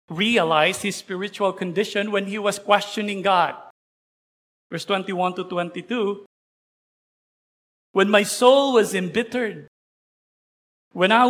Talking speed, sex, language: 105 wpm, male, English